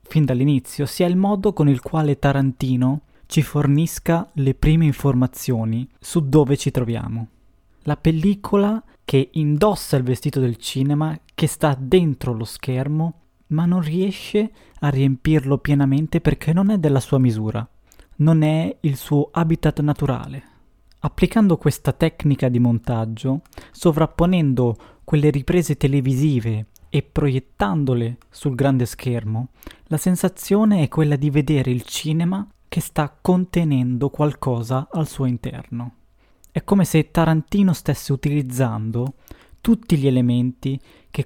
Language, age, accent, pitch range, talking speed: Italian, 20-39, native, 125-160 Hz, 130 wpm